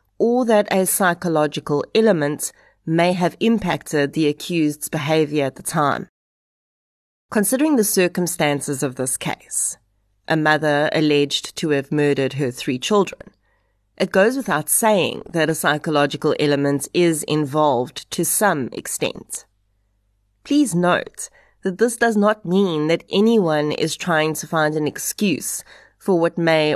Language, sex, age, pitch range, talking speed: English, female, 30-49, 140-185 Hz, 135 wpm